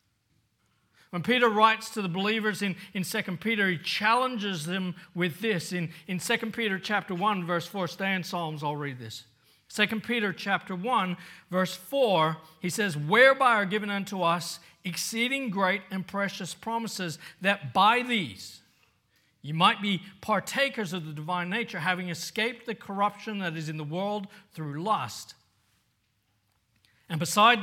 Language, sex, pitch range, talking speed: English, male, 150-205 Hz, 155 wpm